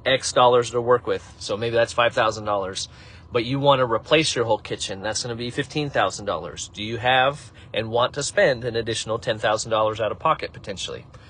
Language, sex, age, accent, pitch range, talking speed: English, male, 30-49, American, 110-135 Hz, 225 wpm